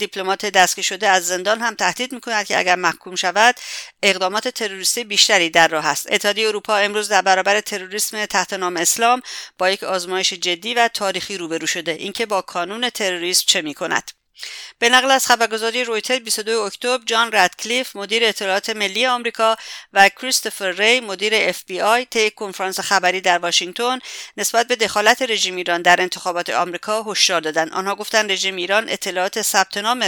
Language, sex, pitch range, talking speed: English, female, 185-225 Hz, 165 wpm